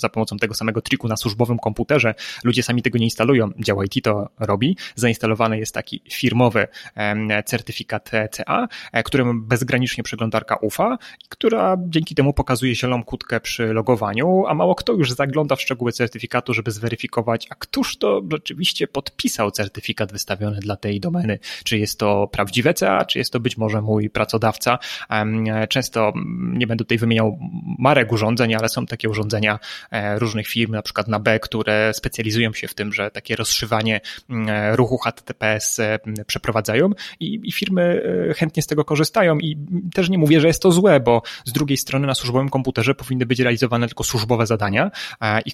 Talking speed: 165 wpm